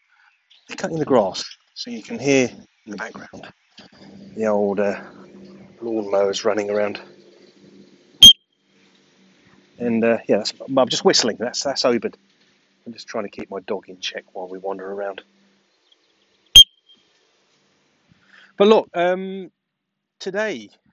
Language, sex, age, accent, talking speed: English, male, 30-49, British, 130 wpm